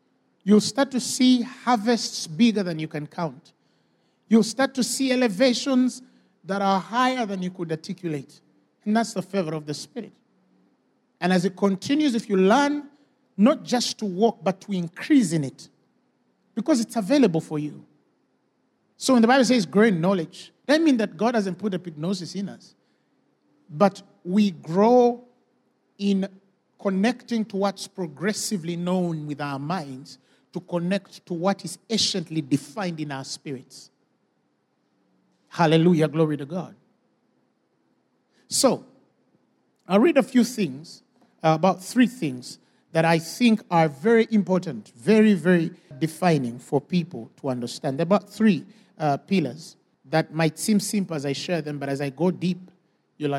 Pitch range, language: 160-225 Hz, English